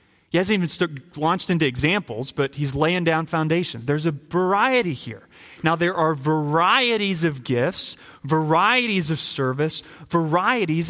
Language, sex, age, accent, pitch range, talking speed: English, male, 30-49, American, 120-160 Hz, 140 wpm